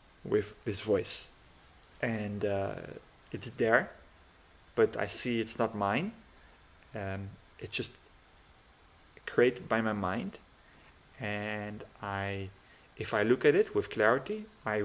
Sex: male